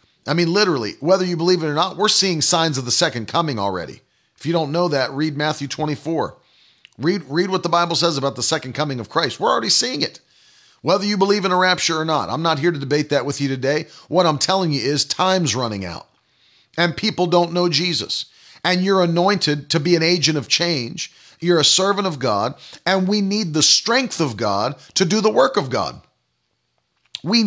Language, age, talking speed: English, 40-59, 215 wpm